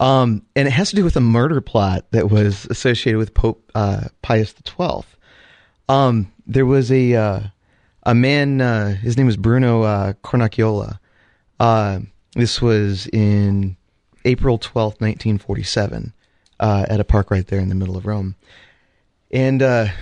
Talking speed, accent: 160 wpm, American